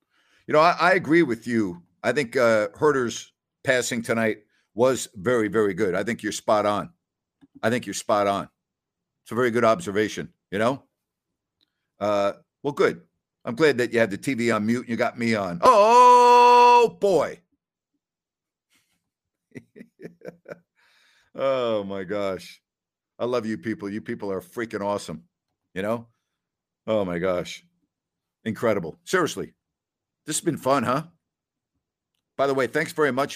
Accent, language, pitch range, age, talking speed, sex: American, English, 105-135 Hz, 50-69, 150 wpm, male